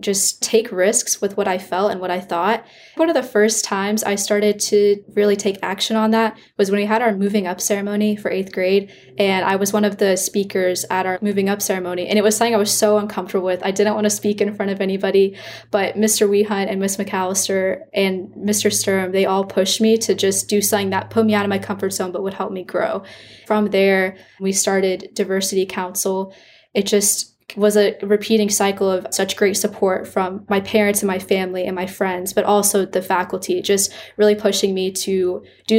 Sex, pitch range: female, 190-210 Hz